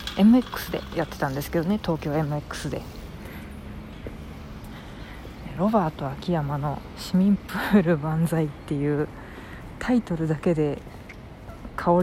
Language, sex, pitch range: Japanese, female, 150-200 Hz